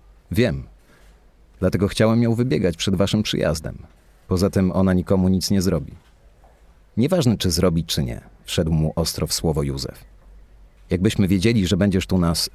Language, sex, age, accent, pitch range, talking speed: Polish, male, 40-59, native, 80-100 Hz, 155 wpm